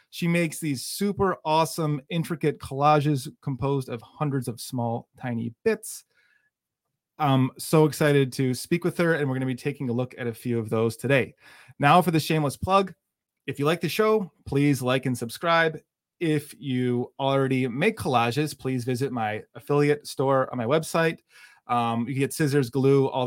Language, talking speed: English, 175 wpm